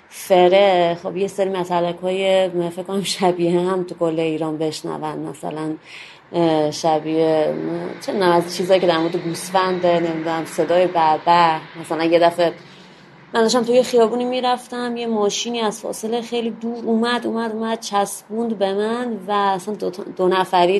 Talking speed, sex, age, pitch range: 150 wpm, female, 30-49, 175-215 Hz